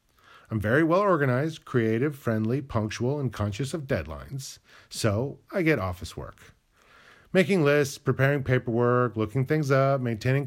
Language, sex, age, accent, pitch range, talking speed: English, male, 40-59, American, 115-165 Hz, 130 wpm